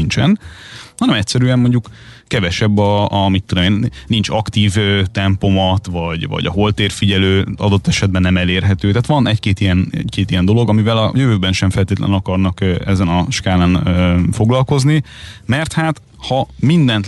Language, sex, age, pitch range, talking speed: Hungarian, male, 30-49, 90-115 Hz, 150 wpm